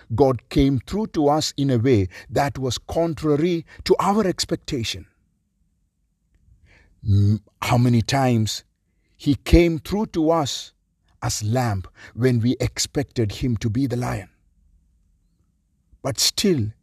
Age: 50-69